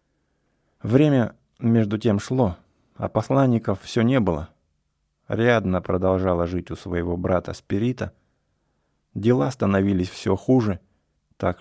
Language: English